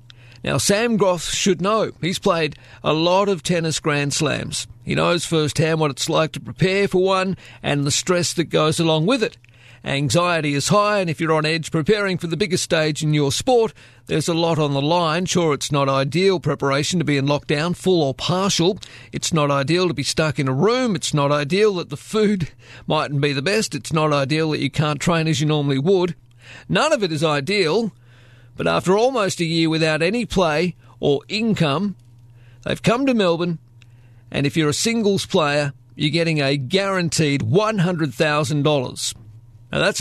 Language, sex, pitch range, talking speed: English, male, 135-175 Hz, 190 wpm